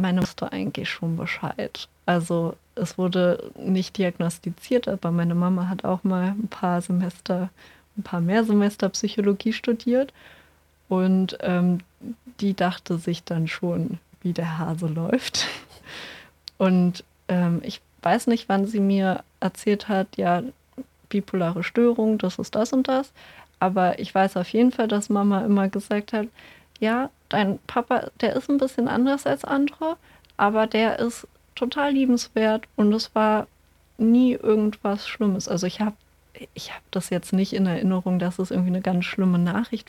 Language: German